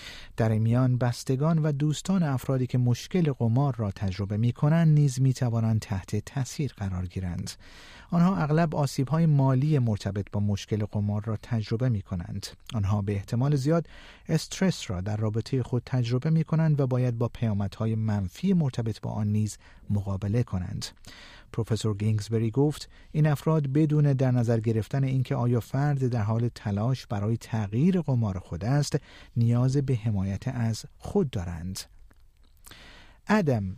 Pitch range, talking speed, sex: 105-140 Hz, 145 wpm, male